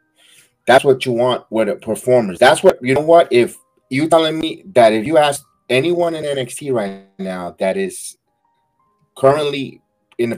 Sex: male